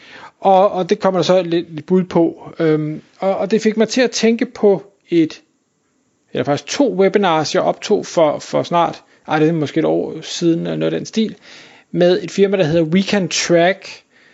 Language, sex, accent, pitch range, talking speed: Danish, male, native, 160-210 Hz, 195 wpm